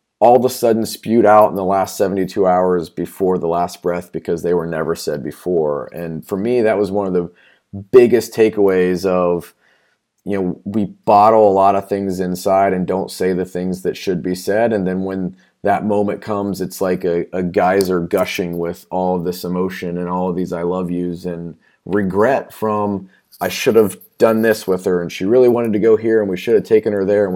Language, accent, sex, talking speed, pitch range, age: English, American, male, 215 wpm, 90-105 Hz, 30-49